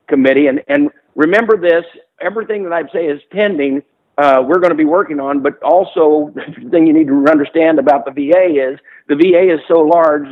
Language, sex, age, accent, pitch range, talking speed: English, male, 50-69, American, 140-180 Hz, 205 wpm